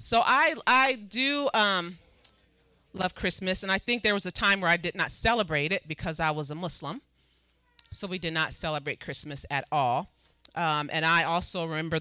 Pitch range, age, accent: 155-190 Hz, 30-49, American